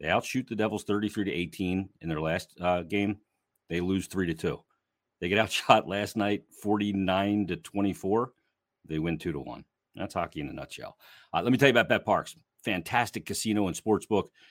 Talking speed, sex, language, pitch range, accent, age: 195 wpm, male, English, 90-115 Hz, American, 40-59